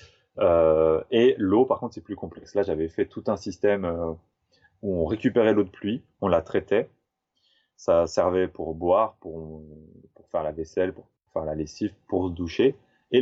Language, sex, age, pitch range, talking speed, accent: French, male, 30-49, 80-95 Hz, 185 wpm, French